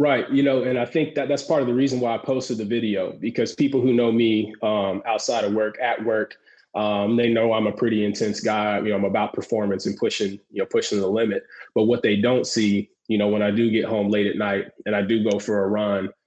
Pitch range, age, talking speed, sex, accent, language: 110-130 Hz, 20-39, 260 wpm, male, American, English